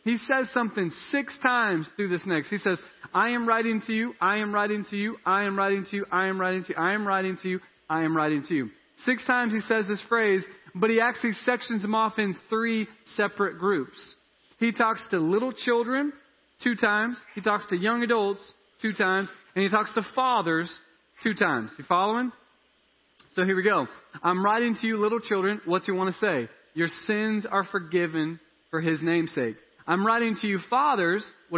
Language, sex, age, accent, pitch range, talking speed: English, male, 40-59, American, 175-225 Hz, 205 wpm